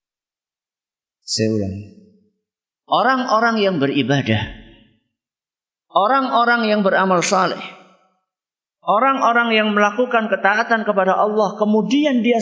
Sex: male